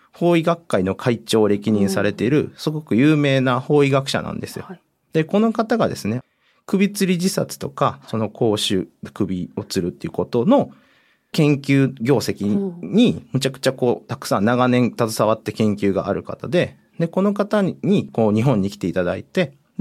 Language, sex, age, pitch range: Japanese, male, 40-59, 110-170 Hz